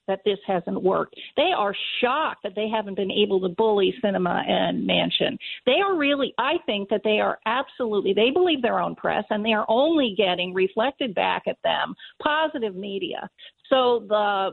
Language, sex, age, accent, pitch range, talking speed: English, female, 50-69, American, 200-295 Hz, 180 wpm